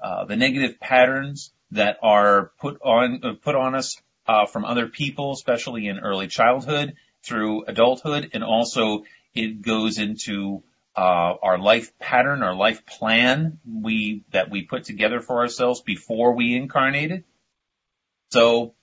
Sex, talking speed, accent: male, 145 wpm, American